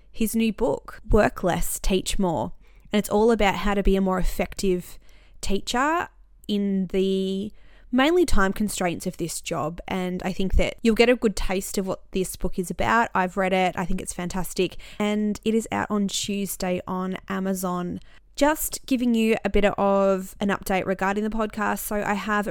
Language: English